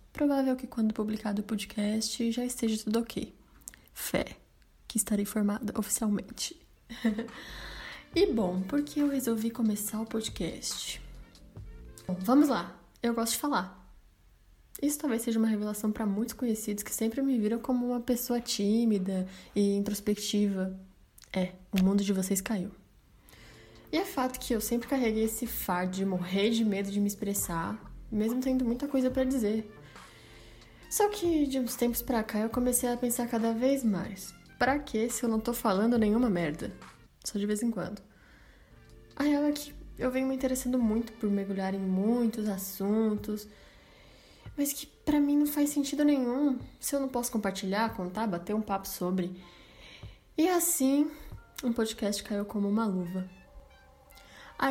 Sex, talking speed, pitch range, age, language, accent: female, 160 wpm, 205-255 Hz, 10-29, Portuguese, Brazilian